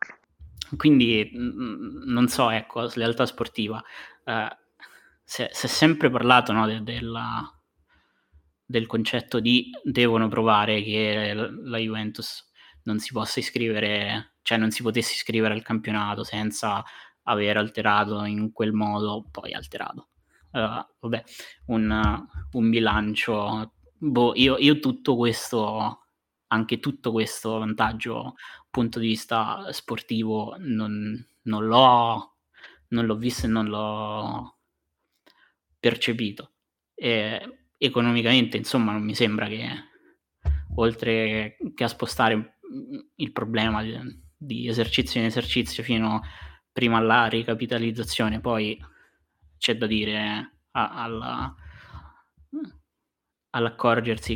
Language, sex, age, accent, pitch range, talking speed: Italian, male, 20-39, native, 105-120 Hz, 100 wpm